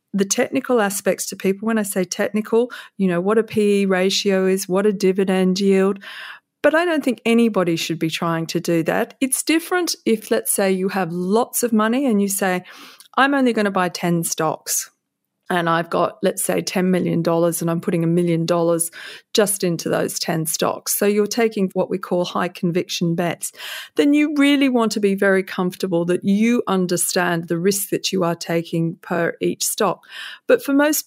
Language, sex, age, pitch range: English, female, 40-59, 170-210 Hz